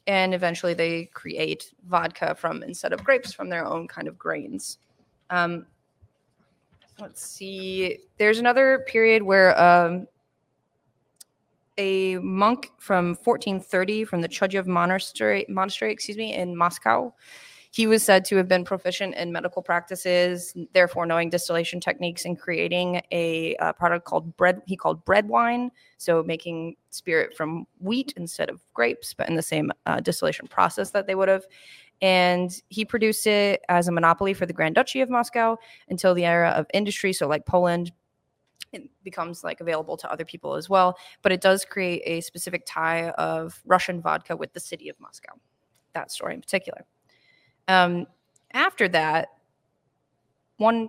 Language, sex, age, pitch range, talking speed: English, female, 20-39, 170-200 Hz, 155 wpm